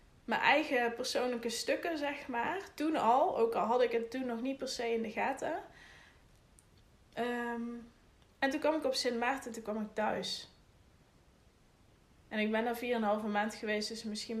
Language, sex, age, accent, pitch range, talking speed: Dutch, female, 20-39, Dutch, 210-245 Hz, 190 wpm